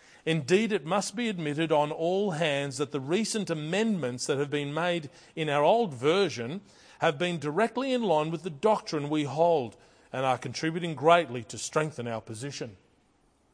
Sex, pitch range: male, 155-220 Hz